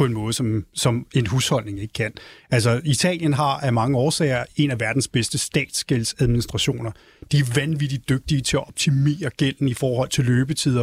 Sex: male